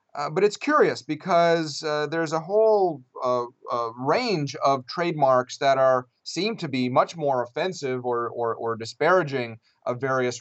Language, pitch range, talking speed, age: English, 115-140 Hz, 160 wpm, 30-49